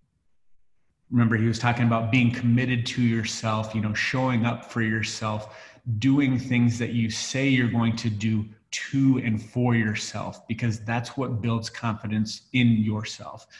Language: English